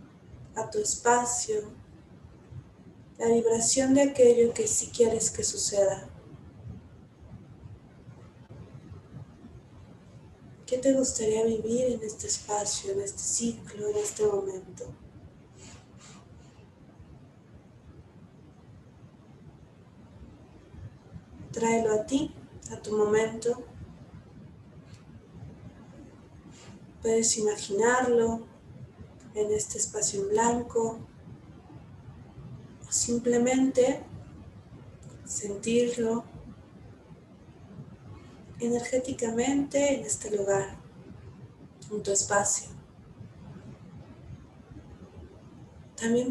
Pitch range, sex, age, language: 210-245 Hz, female, 30-49, Spanish